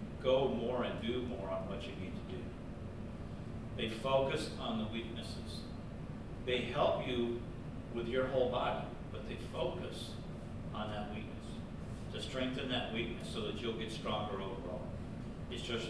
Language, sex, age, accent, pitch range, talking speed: English, male, 50-69, American, 110-125 Hz, 155 wpm